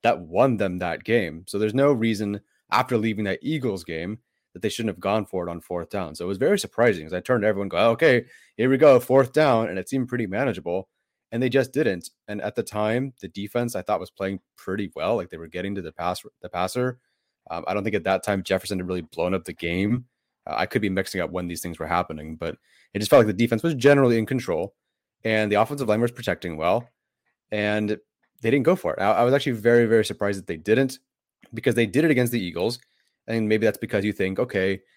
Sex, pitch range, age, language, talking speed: male, 95-120 Hz, 30-49, English, 245 wpm